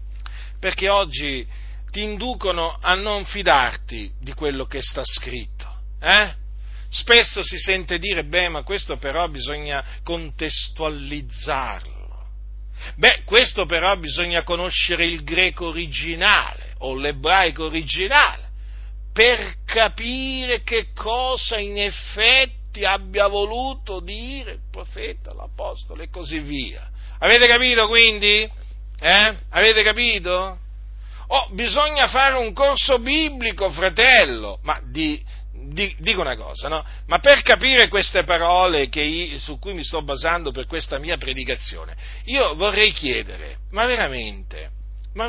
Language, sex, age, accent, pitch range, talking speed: Italian, male, 50-69, native, 145-215 Hz, 120 wpm